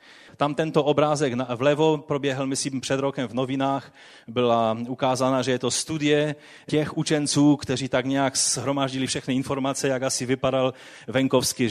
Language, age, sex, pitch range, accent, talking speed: Czech, 30-49, male, 120-155 Hz, native, 145 wpm